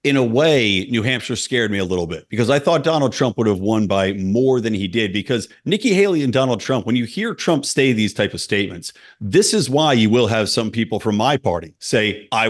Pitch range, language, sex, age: 105-135 Hz, English, male, 50-69